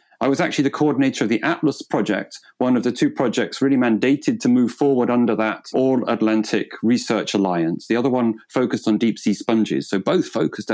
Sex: male